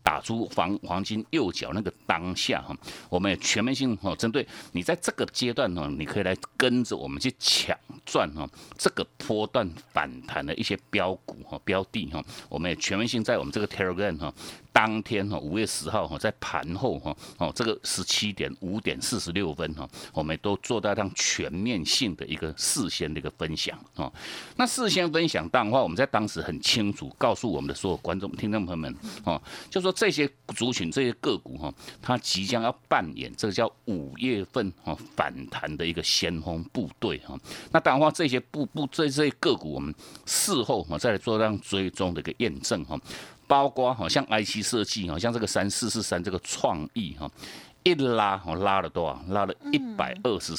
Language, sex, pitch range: Chinese, male, 95-130 Hz